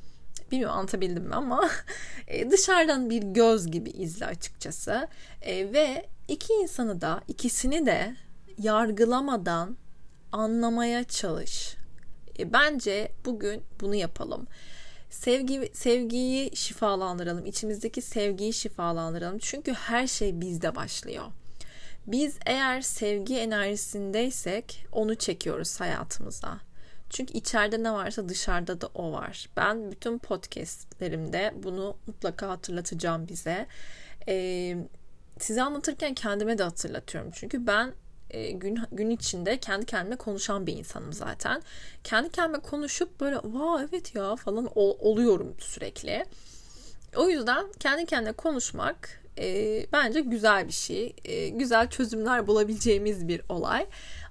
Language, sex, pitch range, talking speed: Turkish, female, 200-255 Hz, 115 wpm